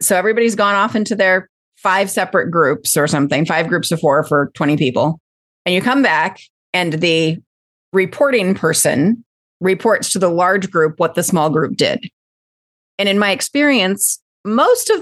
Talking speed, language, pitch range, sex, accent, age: 170 wpm, English, 160-225 Hz, female, American, 30-49